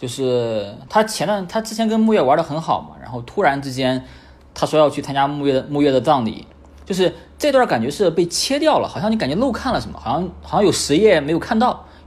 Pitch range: 130-210 Hz